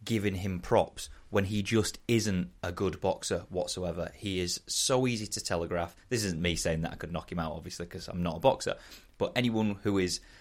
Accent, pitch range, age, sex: British, 90-105 Hz, 30-49, male